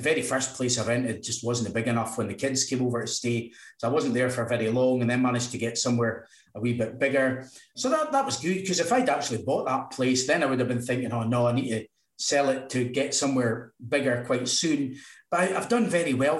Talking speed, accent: 255 wpm, British